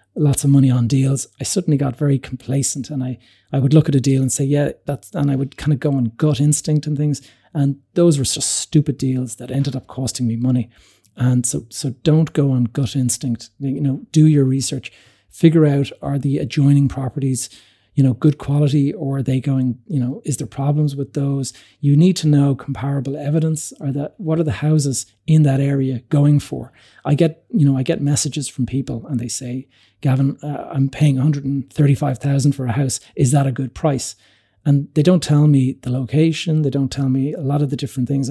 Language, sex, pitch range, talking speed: English, male, 130-145 Hz, 215 wpm